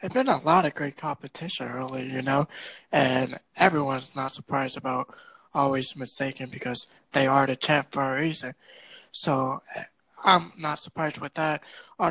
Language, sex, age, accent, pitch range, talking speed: English, male, 20-39, American, 130-150 Hz, 160 wpm